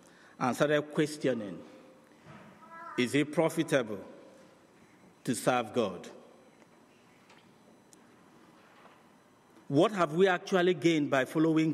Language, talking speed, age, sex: English, 80 wpm, 50-69, male